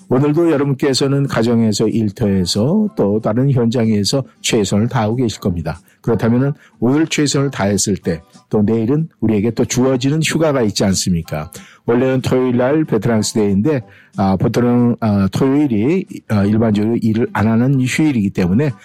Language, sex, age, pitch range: Korean, male, 50-69, 100-130 Hz